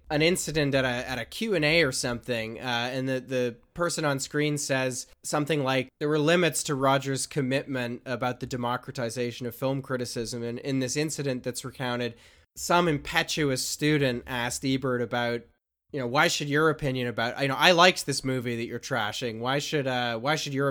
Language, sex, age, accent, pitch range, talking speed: English, male, 20-39, American, 125-150 Hz, 195 wpm